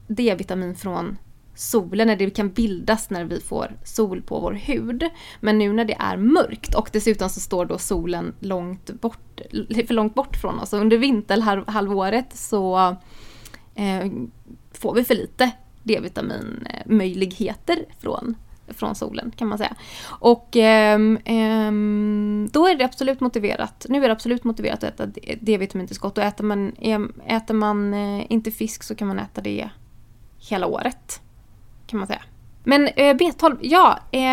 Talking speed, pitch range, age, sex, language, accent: 145 wpm, 190-235 Hz, 20-39, female, English, Swedish